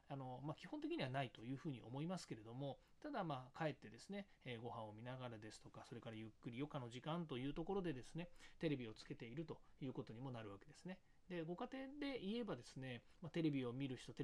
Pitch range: 125-175 Hz